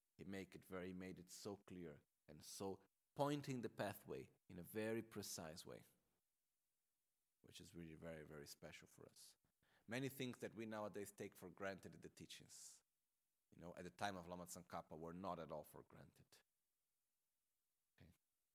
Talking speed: 170 wpm